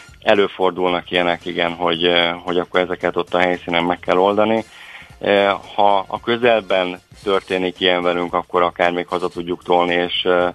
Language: Hungarian